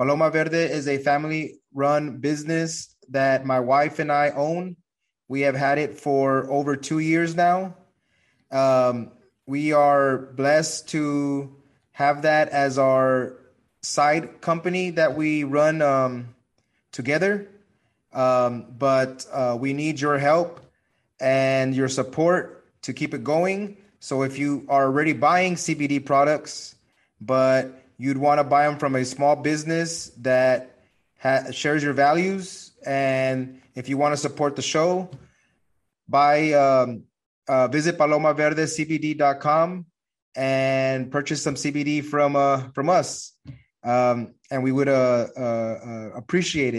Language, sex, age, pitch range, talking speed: English, male, 20-39, 130-155 Hz, 130 wpm